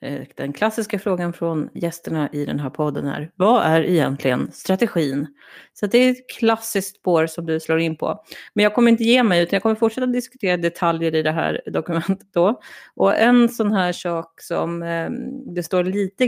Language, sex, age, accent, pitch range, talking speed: Swedish, female, 30-49, native, 170-210 Hz, 190 wpm